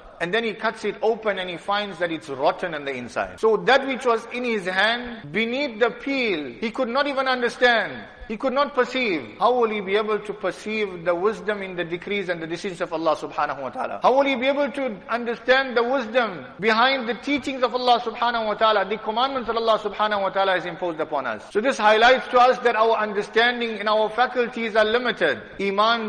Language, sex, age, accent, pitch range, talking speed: English, male, 50-69, Indian, 200-235 Hz, 220 wpm